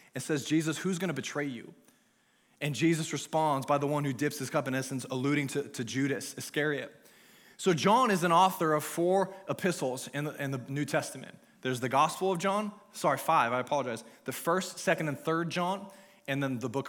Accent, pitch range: American, 140-175 Hz